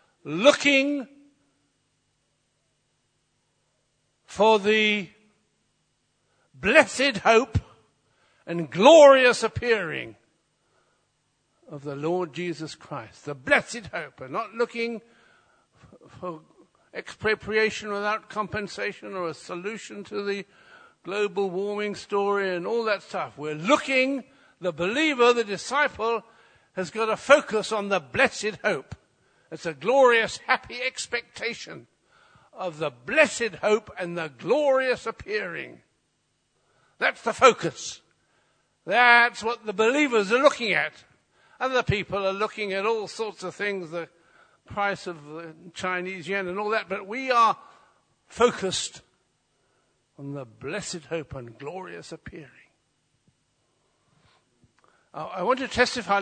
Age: 60-79